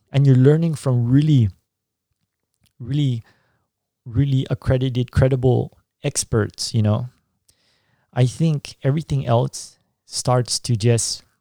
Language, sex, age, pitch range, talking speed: English, male, 30-49, 110-135 Hz, 100 wpm